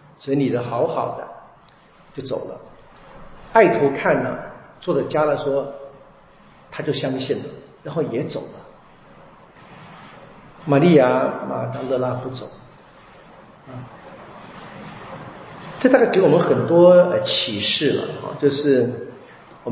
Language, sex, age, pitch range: Chinese, male, 50-69, 125-145 Hz